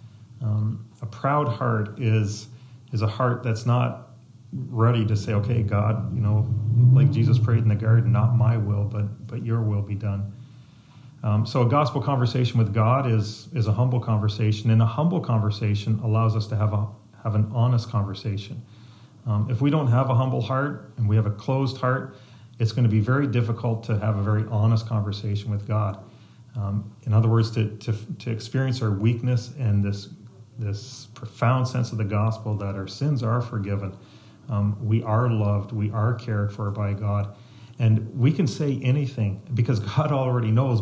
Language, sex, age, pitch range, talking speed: English, male, 40-59, 105-120 Hz, 185 wpm